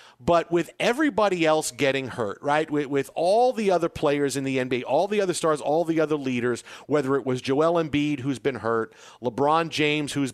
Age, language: 40-59, English